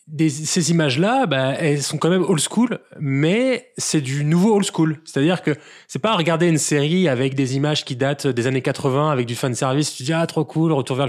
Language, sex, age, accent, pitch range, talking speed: French, male, 20-39, French, 130-165 Hz, 235 wpm